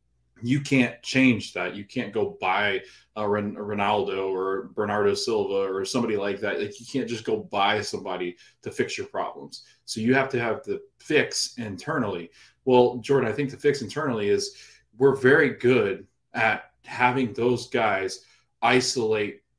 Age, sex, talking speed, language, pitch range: 20-39, male, 165 wpm, English, 110-145 Hz